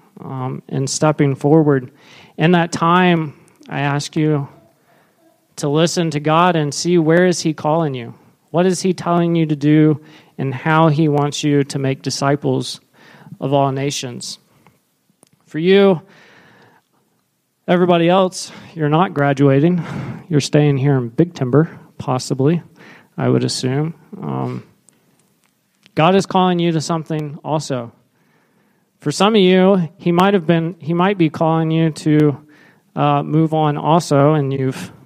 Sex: male